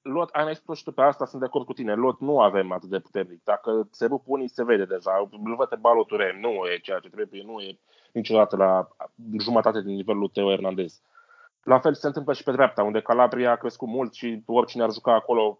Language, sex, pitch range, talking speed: Romanian, male, 105-165 Hz, 225 wpm